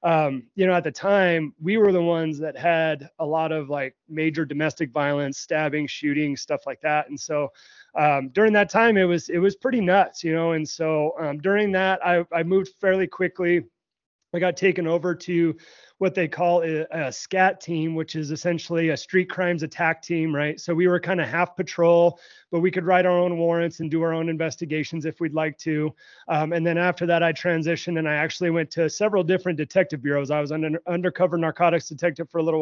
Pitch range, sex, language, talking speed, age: 155-175 Hz, male, English, 215 wpm, 30-49